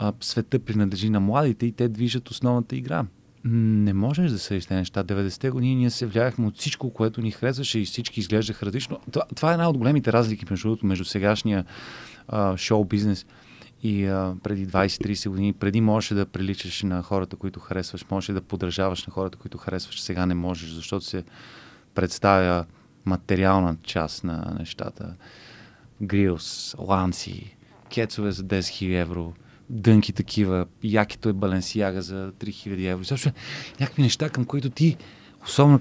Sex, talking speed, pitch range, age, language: male, 155 wpm, 100-125 Hz, 20-39, Bulgarian